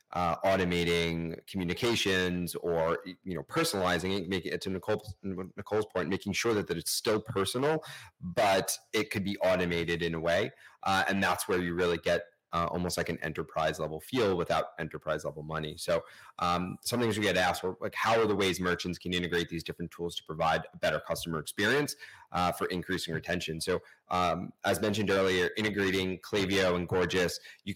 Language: English